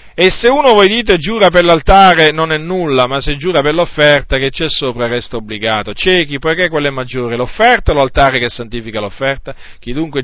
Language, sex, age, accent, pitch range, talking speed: Italian, male, 40-59, native, 120-160 Hz, 205 wpm